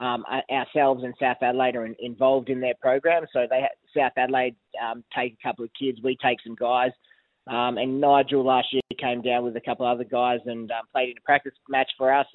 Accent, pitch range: Australian, 120-135 Hz